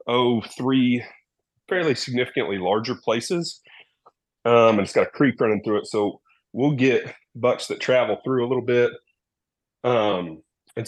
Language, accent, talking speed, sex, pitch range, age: English, American, 150 wpm, male, 100-125 Hz, 30-49